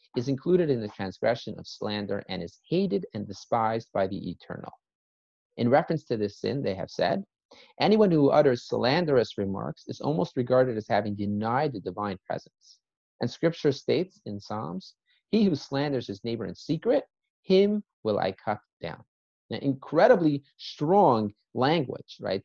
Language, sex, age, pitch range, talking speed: English, male, 40-59, 105-165 Hz, 160 wpm